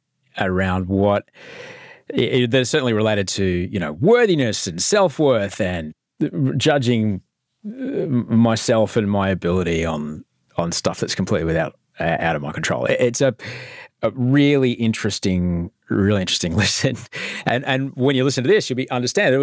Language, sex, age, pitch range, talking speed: English, male, 30-49, 95-130 Hz, 160 wpm